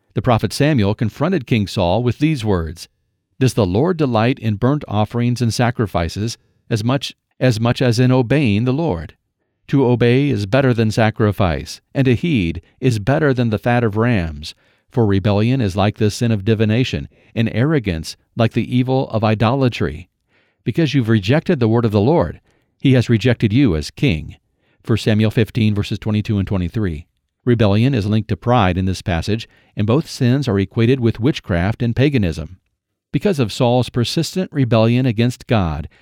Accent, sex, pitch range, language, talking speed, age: American, male, 105-130 Hz, English, 175 wpm, 50-69